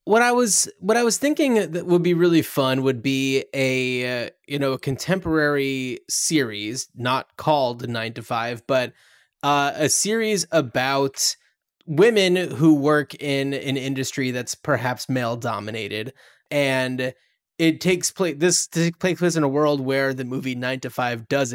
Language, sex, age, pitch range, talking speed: English, male, 20-39, 125-165 Hz, 160 wpm